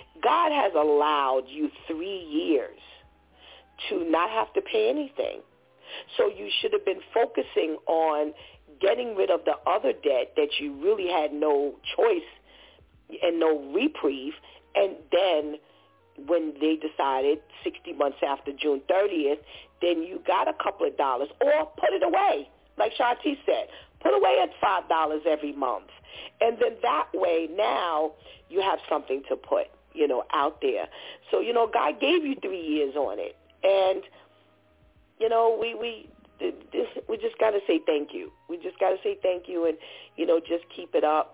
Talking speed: 165 wpm